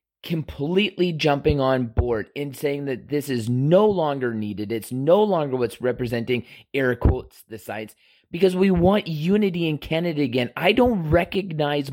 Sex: male